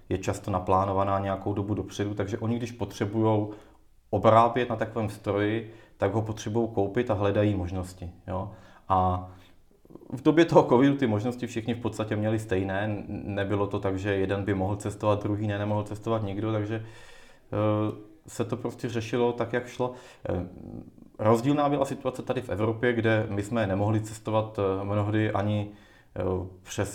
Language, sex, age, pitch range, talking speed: Czech, male, 30-49, 95-110 Hz, 155 wpm